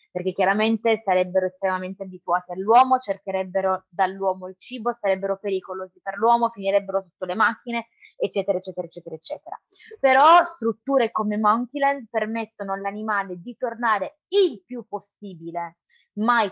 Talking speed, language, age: 125 wpm, Italian, 20-39